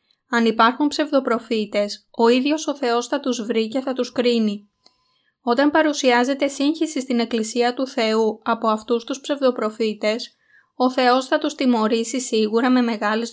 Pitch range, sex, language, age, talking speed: 220-265 Hz, female, Greek, 20-39, 150 wpm